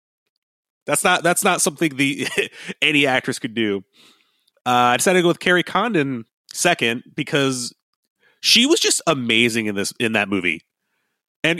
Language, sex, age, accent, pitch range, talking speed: English, male, 30-49, American, 120-165 Hz, 155 wpm